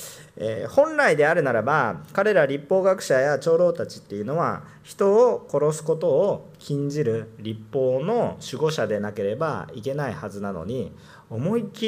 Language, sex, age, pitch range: Japanese, male, 40-59, 110-170 Hz